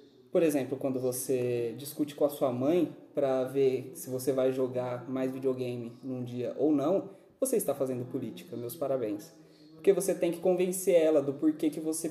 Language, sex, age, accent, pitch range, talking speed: Portuguese, male, 20-39, Brazilian, 145-175 Hz, 185 wpm